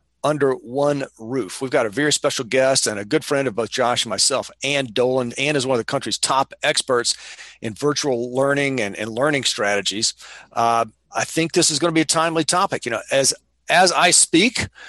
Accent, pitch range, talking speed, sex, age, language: American, 125-155 Hz, 210 wpm, male, 40-59, English